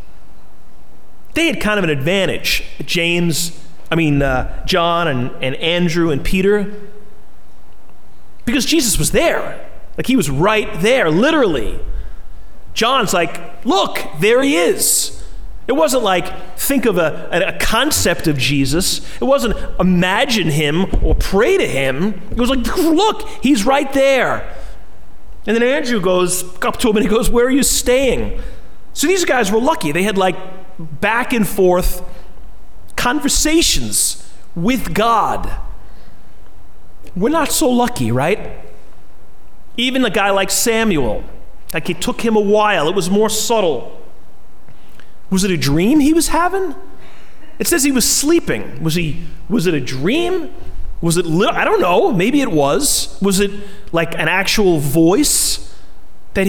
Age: 30-49